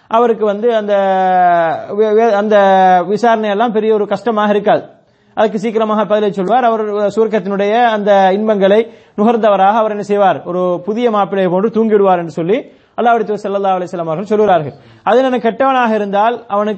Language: English